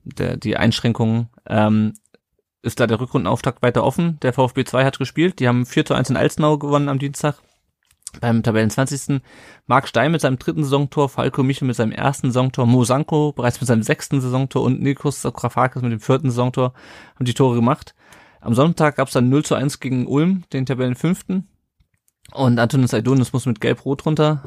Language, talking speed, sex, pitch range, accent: German, 185 wpm, male, 120-140 Hz, German